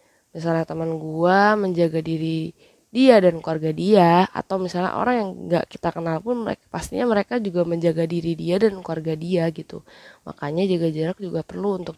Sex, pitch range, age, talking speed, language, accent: female, 165-200 Hz, 20-39, 165 wpm, Indonesian, native